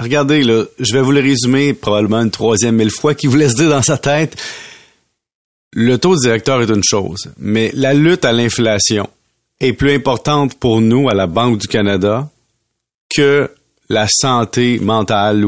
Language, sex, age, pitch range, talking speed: French, male, 40-59, 110-140 Hz, 175 wpm